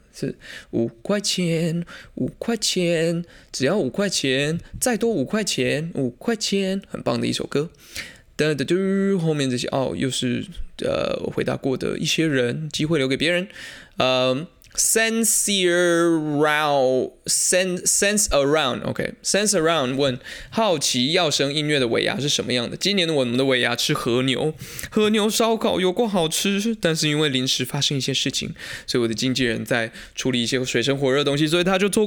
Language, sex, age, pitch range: Chinese, male, 20-39, 130-195 Hz